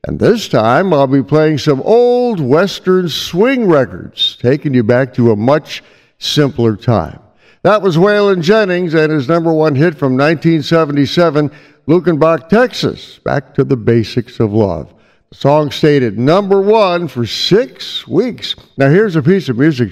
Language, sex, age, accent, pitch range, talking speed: English, male, 60-79, American, 125-170 Hz, 155 wpm